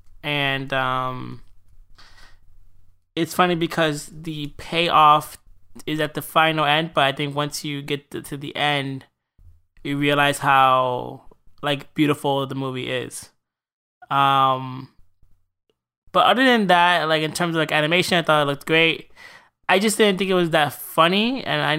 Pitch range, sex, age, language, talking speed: 135-160 Hz, male, 20-39, English, 150 wpm